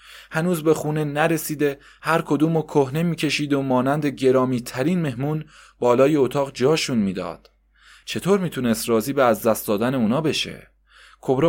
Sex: male